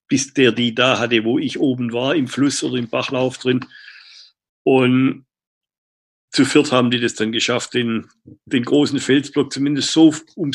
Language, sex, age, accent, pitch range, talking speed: German, male, 60-79, German, 115-135 Hz, 170 wpm